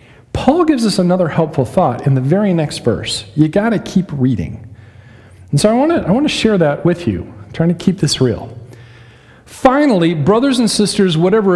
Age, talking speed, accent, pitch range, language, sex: 40-59, 190 wpm, American, 125-180 Hz, English, male